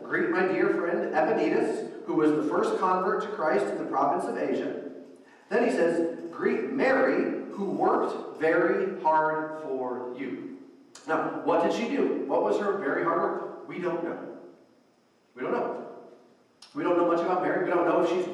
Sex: male